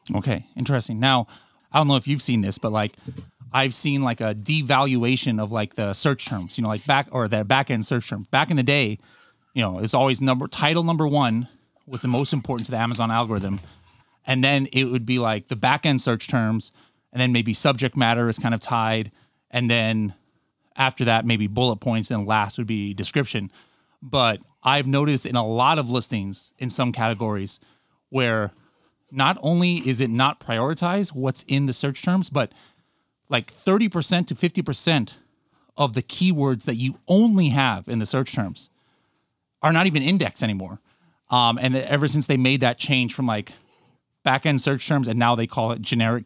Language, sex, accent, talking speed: English, male, American, 190 wpm